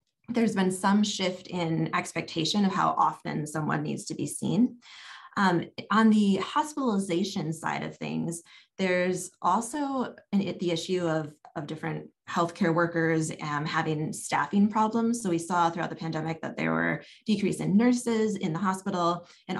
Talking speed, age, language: 155 wpm, 20-39, English